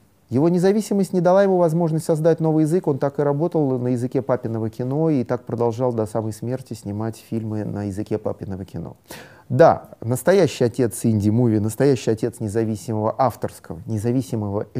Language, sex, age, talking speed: Russian, male, 30-49, 155 wpm